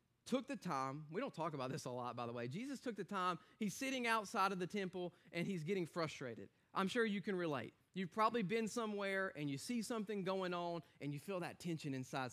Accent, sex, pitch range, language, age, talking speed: American, male, 150-195 Hz, English, 30-49, 235 wpm